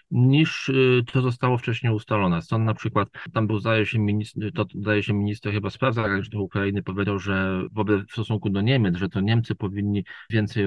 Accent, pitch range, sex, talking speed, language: native, 115-145 Hz, male, 195 wpm, Polish